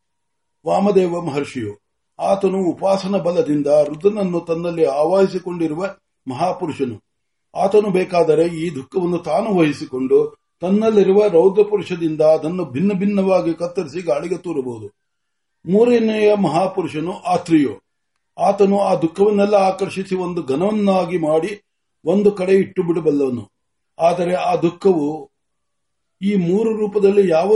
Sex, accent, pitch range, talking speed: male, native, 160-200 Hz, 30 wpm